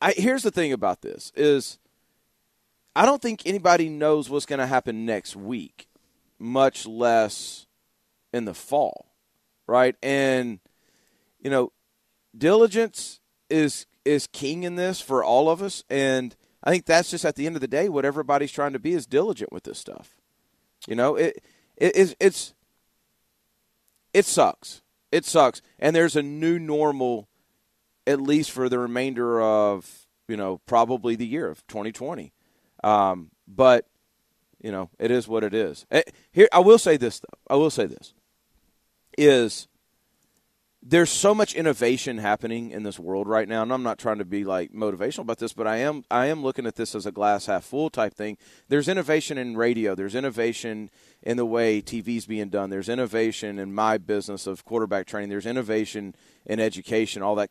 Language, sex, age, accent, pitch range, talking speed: English, male, 40-59, American, 105-145 Hz, 175 wpm